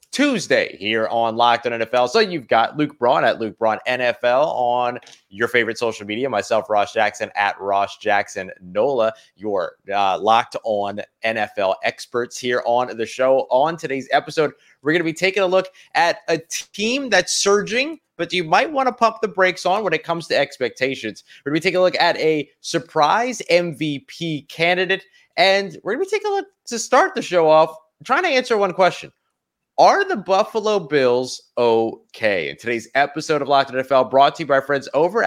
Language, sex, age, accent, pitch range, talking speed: English, male, 30-49, American, 120-190 Hz, 195 wpm